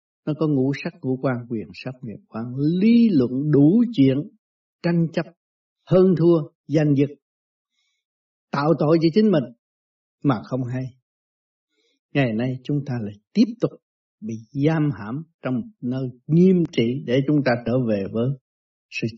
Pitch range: 125-170 Hz